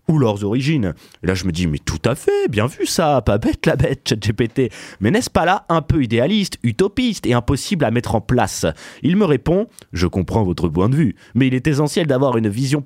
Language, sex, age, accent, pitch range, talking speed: French, male, 30-49, French, 100-160 Hz, 235 wpm